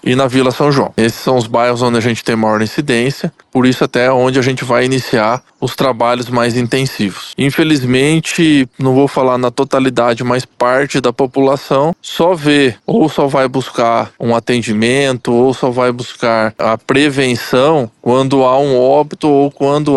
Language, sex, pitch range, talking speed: Portuguese, male, 125-150 Hz, 170 wpm